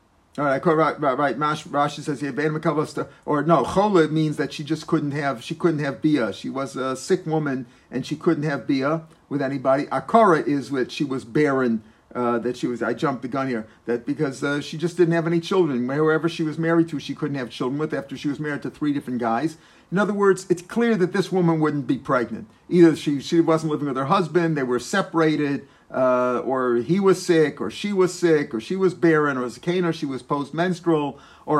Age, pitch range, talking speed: 50-69, 135-170 Hz, 220 wpm